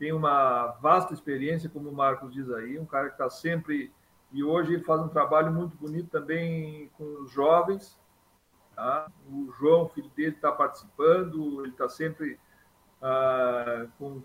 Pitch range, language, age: 140-180 Hz, Portuguese, 50-69